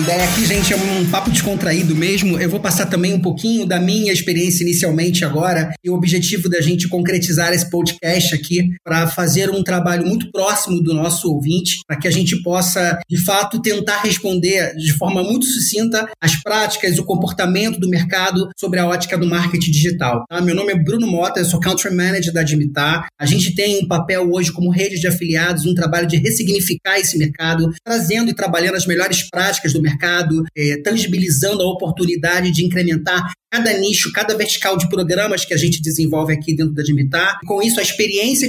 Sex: male